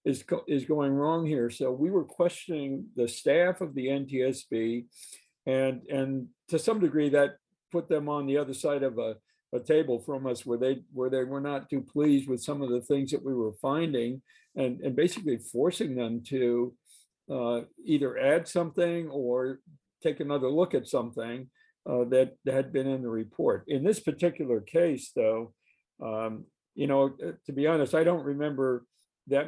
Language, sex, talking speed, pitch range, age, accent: English, male, 180 wpm, 125-150 Hz, 50-69, American